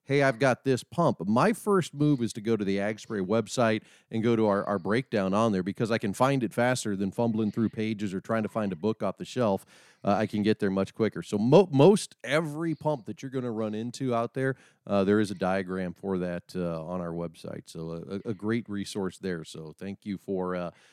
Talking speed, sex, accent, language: 240 wpm, male, American, English